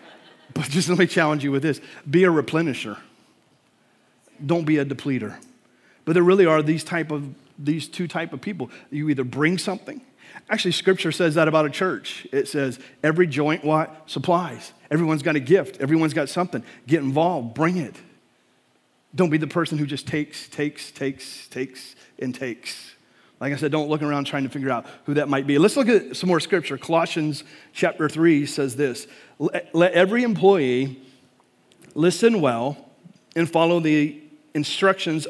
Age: 40-59